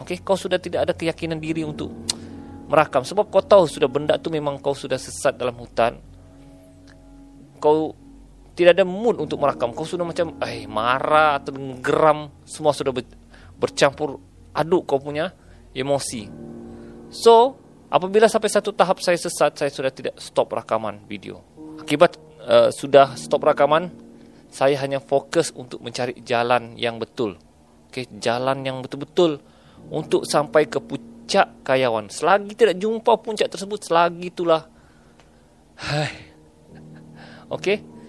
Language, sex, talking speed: Malay, male, 135 wpm